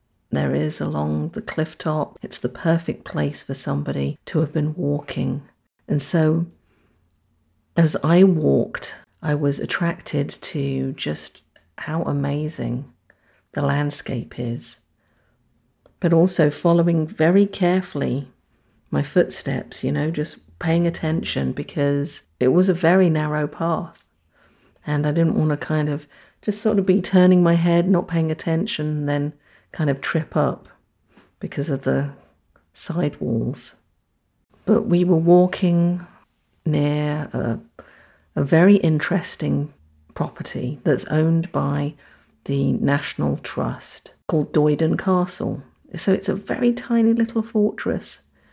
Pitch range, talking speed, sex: 140-175 Hz, 125 wpm, female